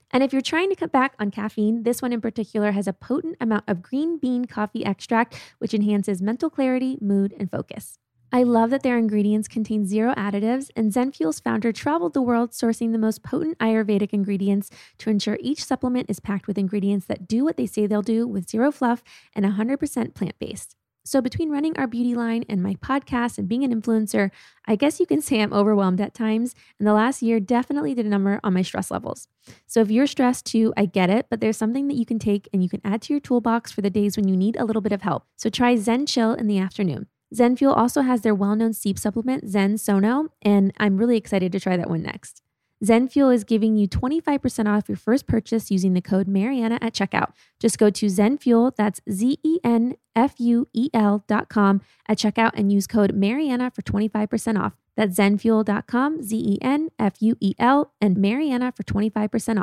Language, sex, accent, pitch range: English, female, American, 205-250 Hz